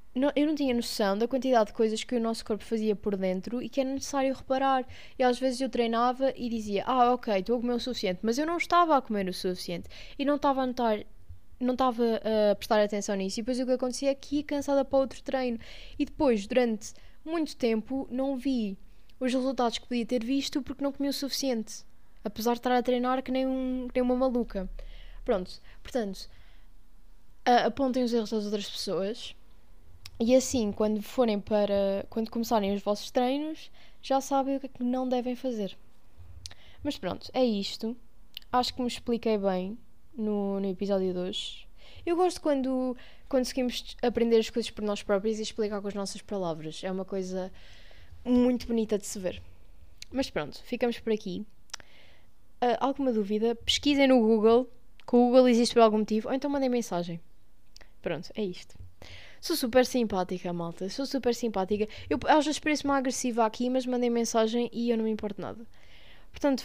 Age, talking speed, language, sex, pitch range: 10-29, 190 wpm, Portuguese, female, 210-260 Hz